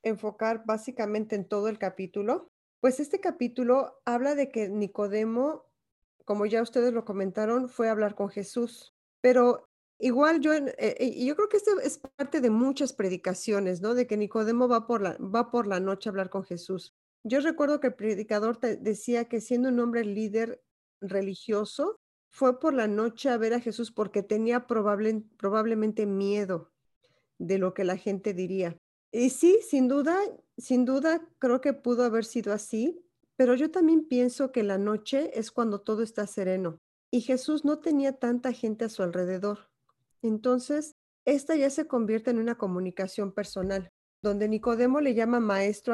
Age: 40-59